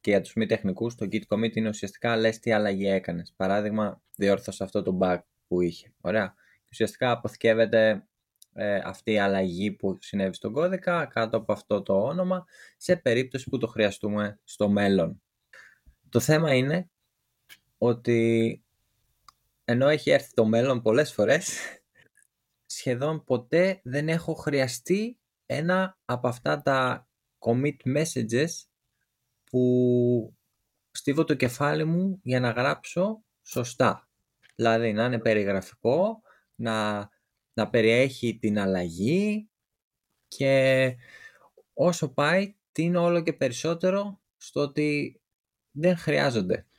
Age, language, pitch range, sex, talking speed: 20-39, Greek, 110-155 Hz, male, 120 wpm